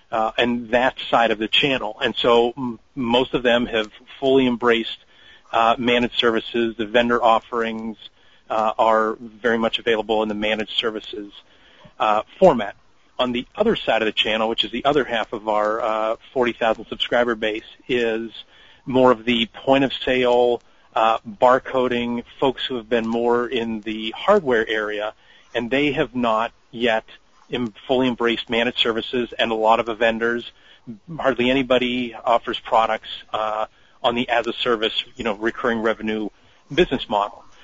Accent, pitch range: American, 110-125 Hz